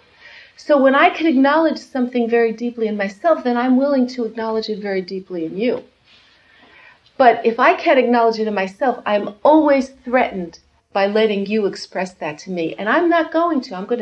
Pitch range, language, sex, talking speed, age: 210-270 Hz, English, female, 195 wpm, 40-59